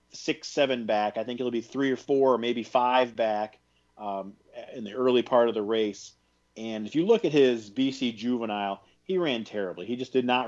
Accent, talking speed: American, 210 wpm